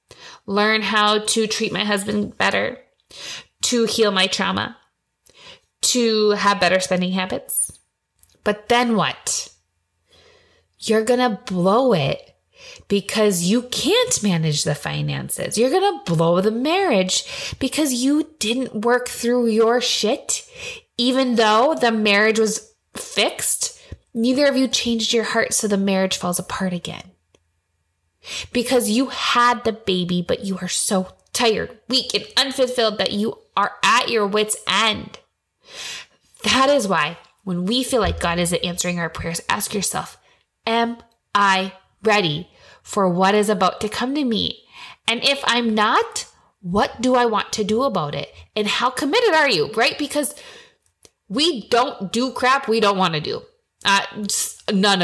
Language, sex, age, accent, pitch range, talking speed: English, female, 20-39, American, 195-260 Hz, 145 wpm